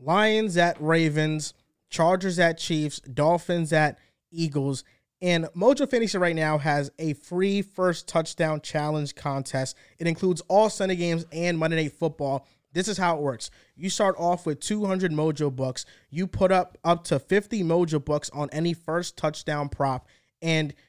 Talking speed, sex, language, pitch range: 160 wpm, male, English, 145-175 Hz